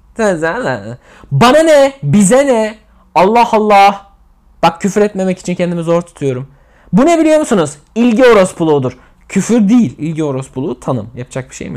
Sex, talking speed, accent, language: male, 140 wpm, native, Turkish